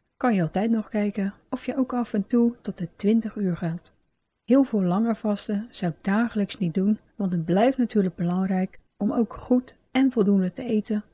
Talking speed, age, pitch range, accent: 200 wpm, 40-59, 185-230 Hz, Dutch